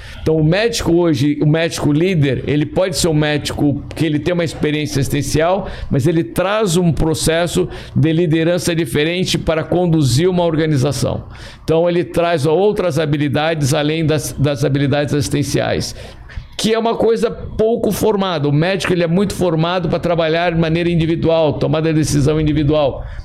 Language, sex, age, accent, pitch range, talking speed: Portuguese, male, 60-79, Brazilian, 145-180 Hz, 155 wpm